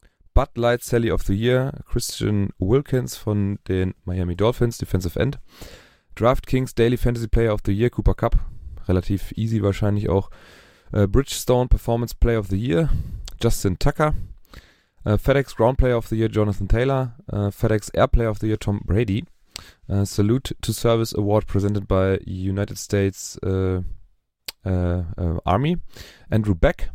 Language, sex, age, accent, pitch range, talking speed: German, male, 30-49, German, 95-120 Hz, 140 wpm